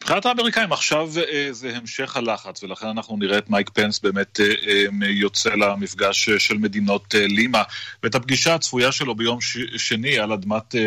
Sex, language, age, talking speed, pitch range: male, Hebrew, 30-49, 150 wpm, 100-120 Hz